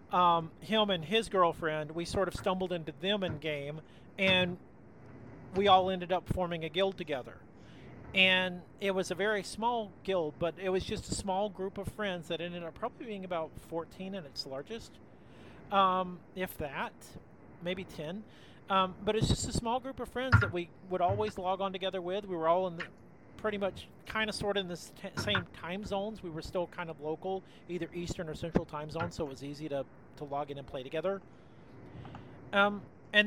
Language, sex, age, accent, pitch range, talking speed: English, male, 40-59, American, 160-200 Hz, 200 wpm